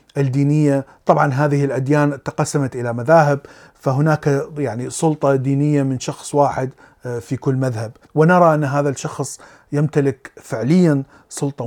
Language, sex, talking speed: Arabic, male, 125 wpm